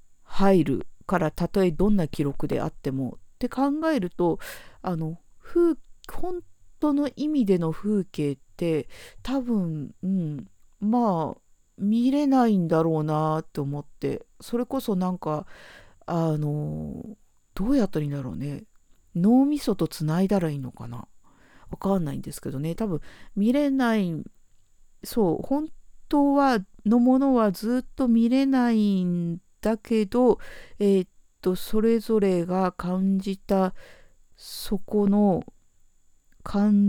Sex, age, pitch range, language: female, 50-69, 160-210 Hz, Japanese